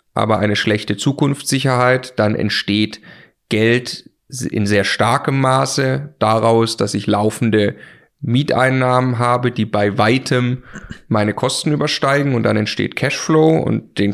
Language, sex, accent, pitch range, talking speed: German, male, German, 110-135 Hz, 125 wpm